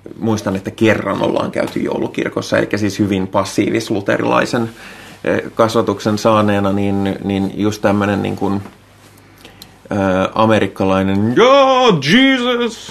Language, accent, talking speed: Finnish, native, 100 wpm